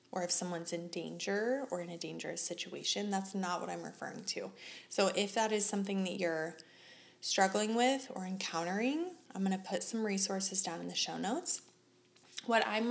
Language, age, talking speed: English, 20-39, 185 wpm